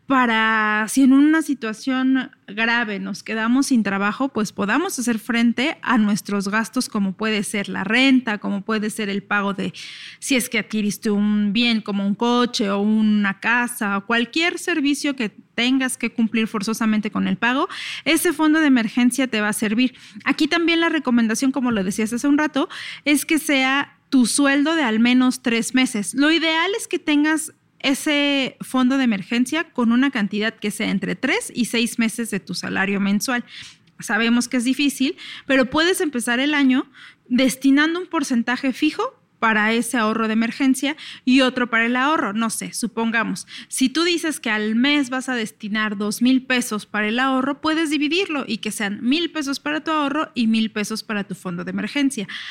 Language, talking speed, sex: Spanish, 185 wpm, female